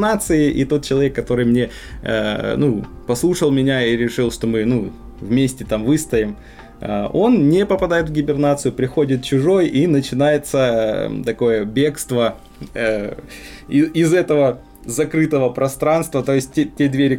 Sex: male